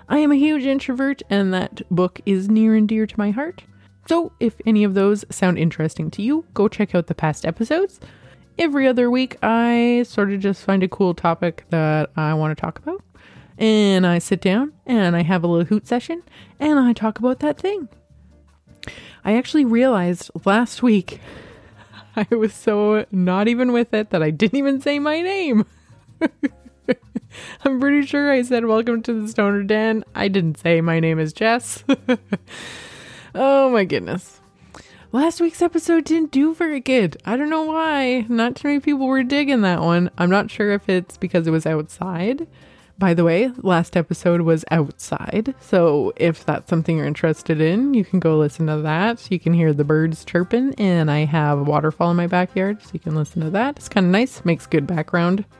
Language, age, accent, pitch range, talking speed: English, 20-39, American, 170-255 Hz, 190 wpm